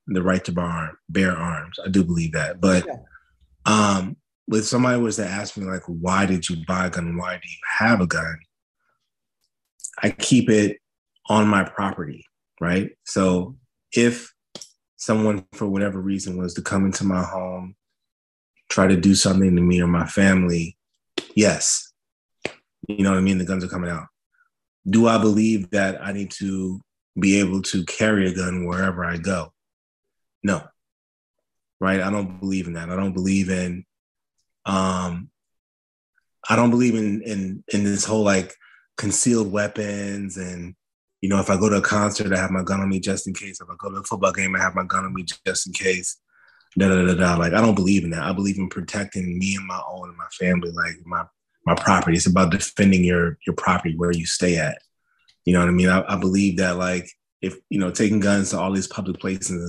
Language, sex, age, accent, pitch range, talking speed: English, male, 30-49, American, 90-100 Hz, 200 wpm